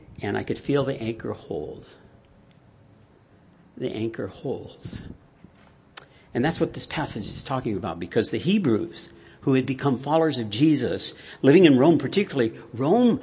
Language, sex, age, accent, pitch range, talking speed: English, male, 60-79, American, 125-170 Hz, 145 wpm